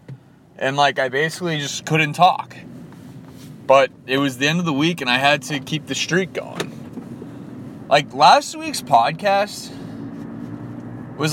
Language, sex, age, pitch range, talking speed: English, male, 20-39, 130-170 Hz, 150 wpm